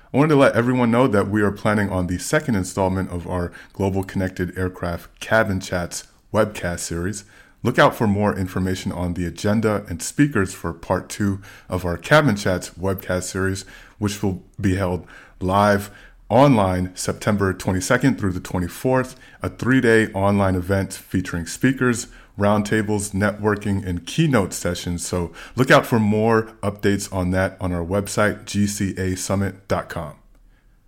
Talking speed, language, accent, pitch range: 150 wpm, English, American, 95-110 Hz